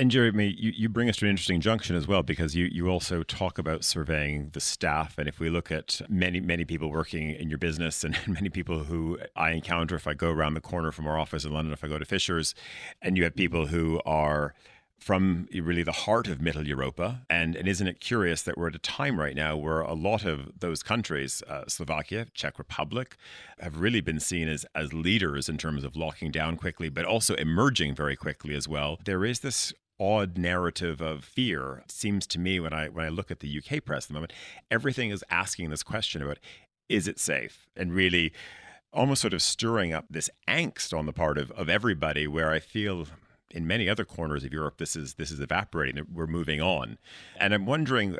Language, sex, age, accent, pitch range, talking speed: English, male, 30-49, American, 75-95 Hz, 220 wpm